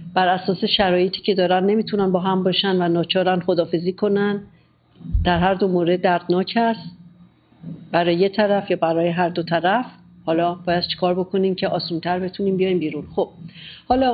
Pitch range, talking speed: 175-210 Hz, 165 wpm